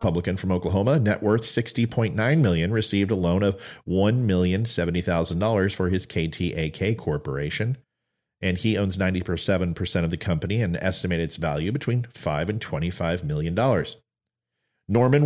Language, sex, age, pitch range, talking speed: English, male, 40-59, 90-115 Hz, 130 wpm